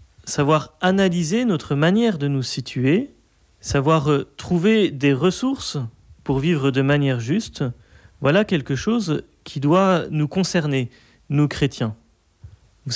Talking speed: 120 wpm